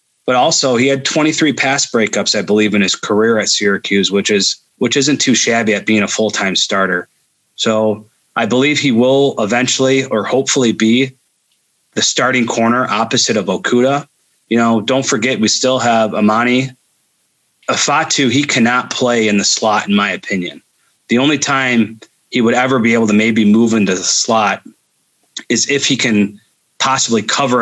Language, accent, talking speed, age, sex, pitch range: English, American, 165 wpm, 30-49, male, 105-130 Hz